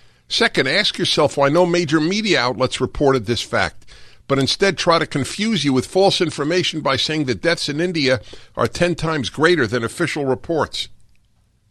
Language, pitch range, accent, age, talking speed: English, 105-130 Hz, American, 50-69, 170 wpm